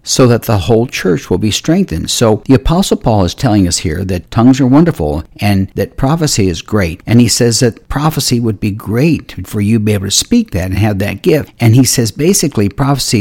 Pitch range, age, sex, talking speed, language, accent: 95-120 Hz, 60-79, male, 225 wpm, English, American